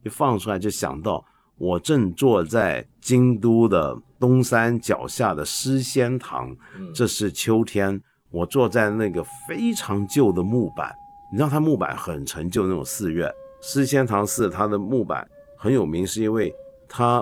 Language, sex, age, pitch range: Chinese, male, 50-69, 100-145 Hz